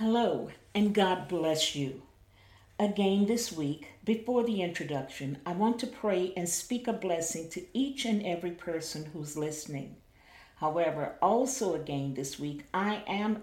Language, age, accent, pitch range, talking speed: English, 50-69, American, 160-210 Hz, 150 wpm